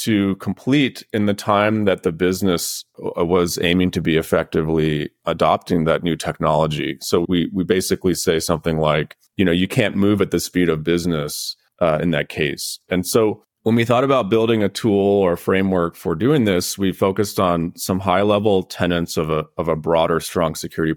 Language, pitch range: English, 80-105 Hz